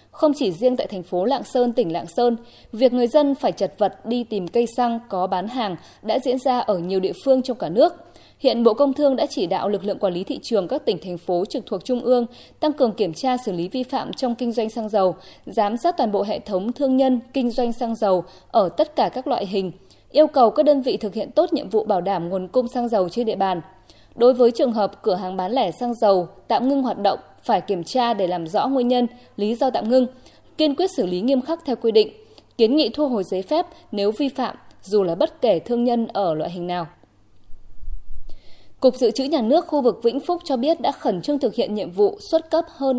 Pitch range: 195-265 Hz